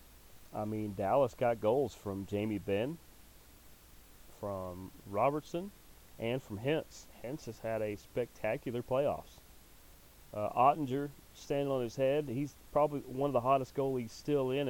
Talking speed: 140 wpm